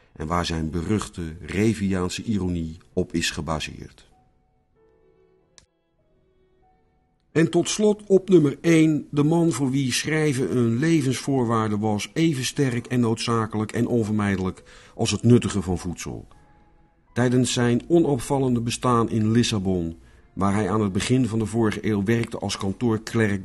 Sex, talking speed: male, 135 wpm